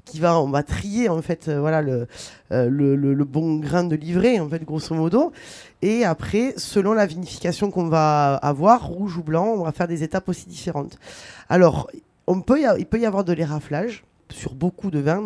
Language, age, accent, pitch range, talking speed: French, 20-39, French, 155-195 Hz, 175 wpm